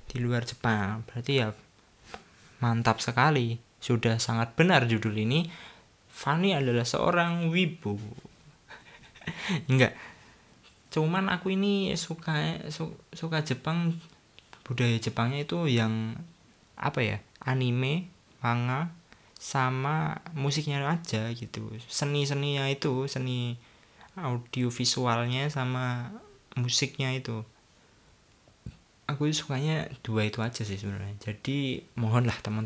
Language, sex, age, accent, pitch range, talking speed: Indonesian, male, 20-39, native, 115-150 Hz, 100 wpm